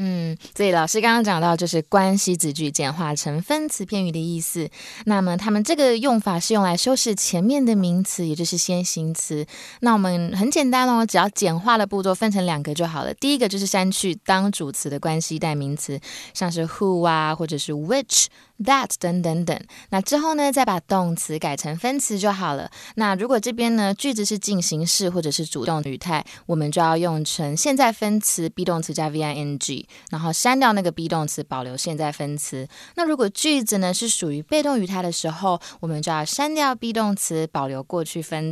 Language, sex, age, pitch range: Chinese, female, 20-39, 165-220 Hz